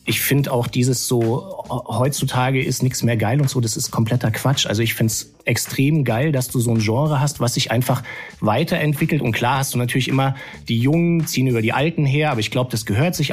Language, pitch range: German, 115-145 Hz